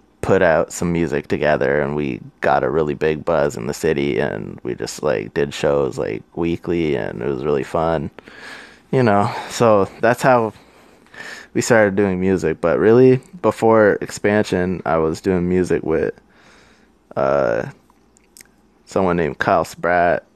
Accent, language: American, English